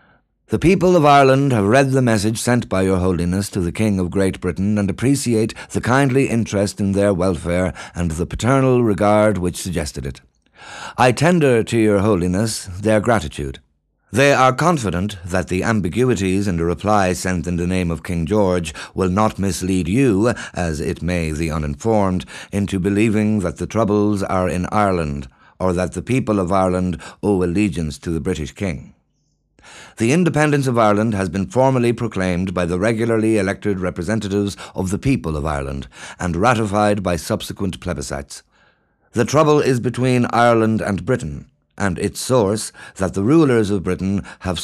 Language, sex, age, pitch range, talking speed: English, male, 60-79, 90-115 Hz, 165 wpm